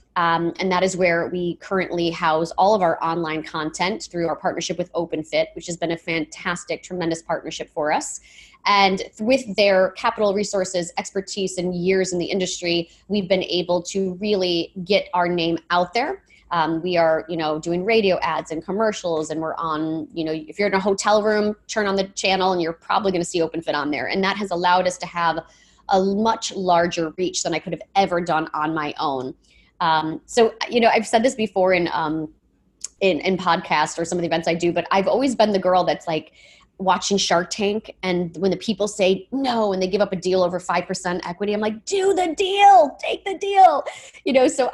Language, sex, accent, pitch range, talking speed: English, female, American, 170-205 Hz, 210 wpm